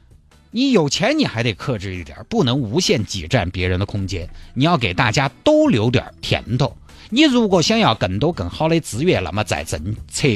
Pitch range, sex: 95-145 Hz, male